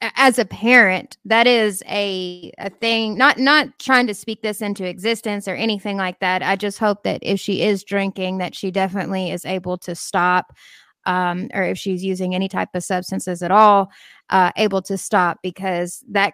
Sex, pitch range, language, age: female, 185-225 Hz, English, 20-39